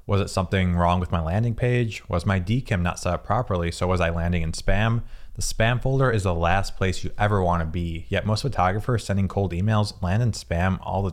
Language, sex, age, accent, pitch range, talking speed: English, male, 20-39, American, 90-110 Hz, 235 wpm